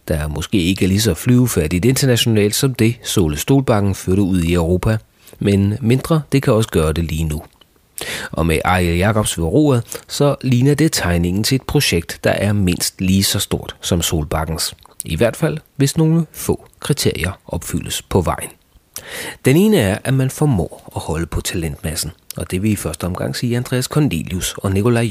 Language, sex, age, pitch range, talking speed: Danish, male, 30-49, 85-125 Hz, 180 wpm